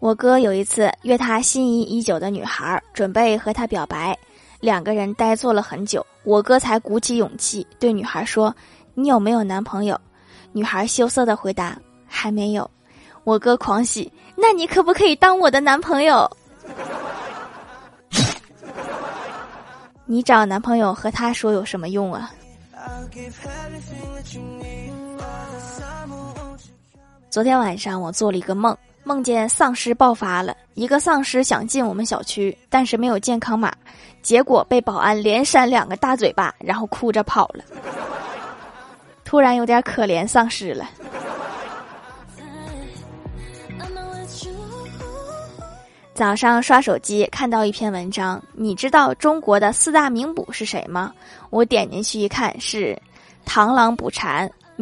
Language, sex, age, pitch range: Chinese, female, 20-39, 190-245 Hz